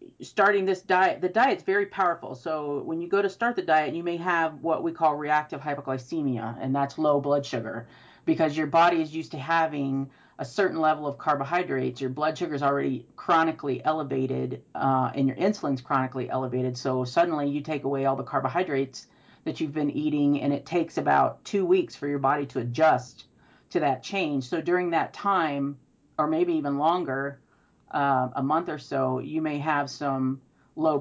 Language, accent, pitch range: English, American, 135-160 Hz